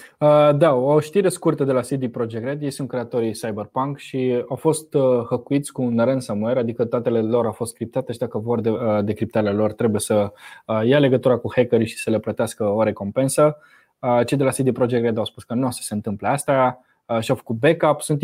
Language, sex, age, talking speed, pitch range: Romanian, male, 20-39, 205 wpm, 115-140 Hz